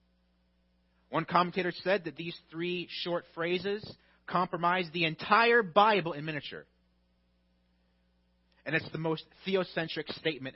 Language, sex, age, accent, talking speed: English, male, 40-59, American, 115 wpm